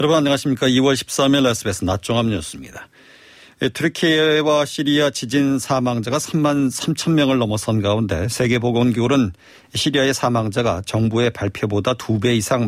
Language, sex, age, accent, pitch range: Korean, male, 40-59, native, 115-140 Hz